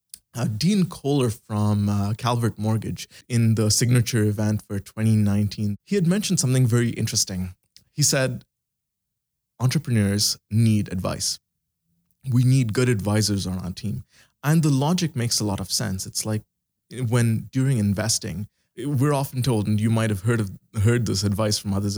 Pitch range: 105-125 Hz